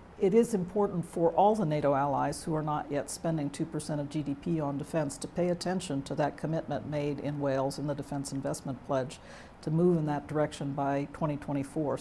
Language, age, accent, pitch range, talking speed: English, 60-79, American, 140-160 Hz, 195 wpm